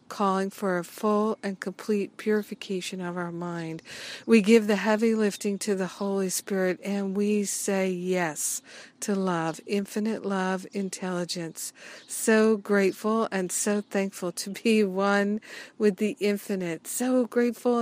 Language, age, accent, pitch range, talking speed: English, 50-69, American, 185-215 Hz, 140 wpm